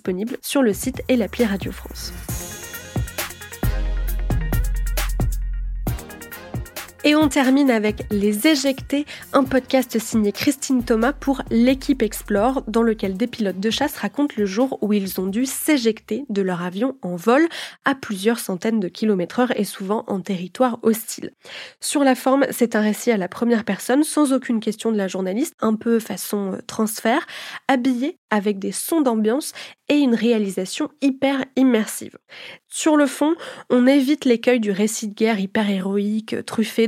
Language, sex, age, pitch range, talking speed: French, female, 20-39, 210-265 Hz, 155 wpm